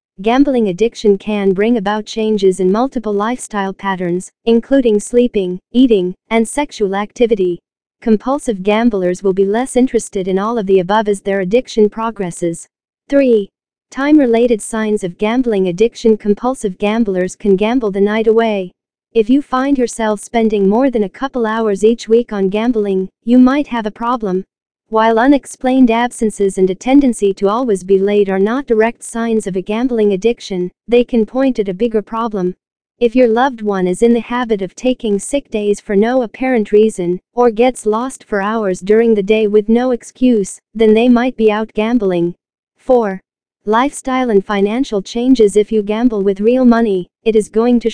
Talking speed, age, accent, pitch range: 170 wpm, 40-59, American, 200-240 Hz